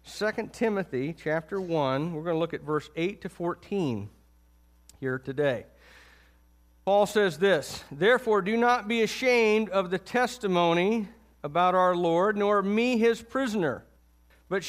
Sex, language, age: male, English, 50-69